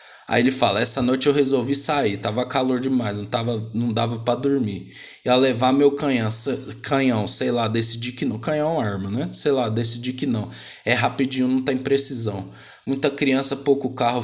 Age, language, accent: 20-39, Portuguese, Brazilian